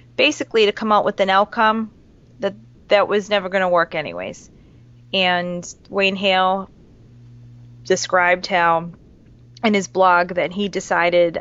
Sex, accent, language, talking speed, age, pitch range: female, American, English, 135 wpm, 30-49, 160-190 Hz